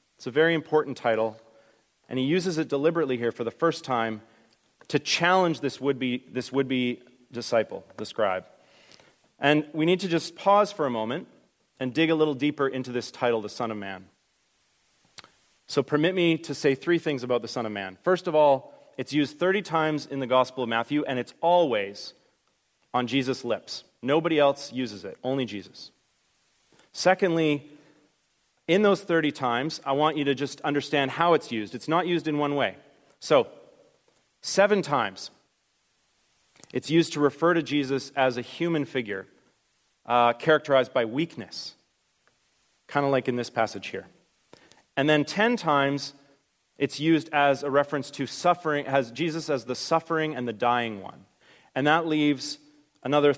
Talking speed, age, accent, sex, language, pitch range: 165 wpm, 30-49, American, male, English, 125-160 Hz